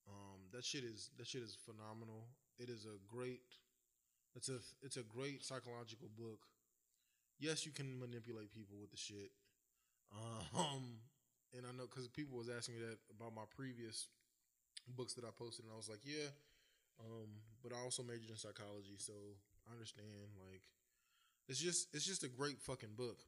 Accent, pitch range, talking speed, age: American, 110-130 Hz, 175 wpm, 20-39